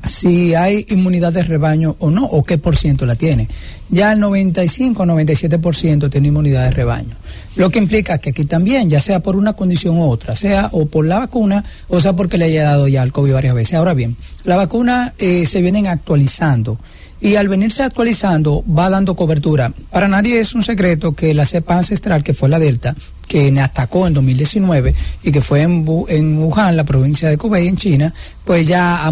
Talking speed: 200 wpm